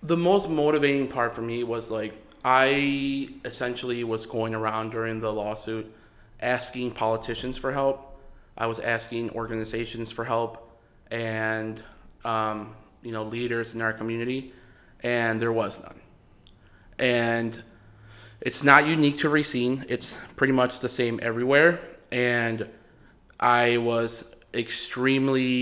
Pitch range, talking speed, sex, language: 115-125 Hz, 125 wpm, male, English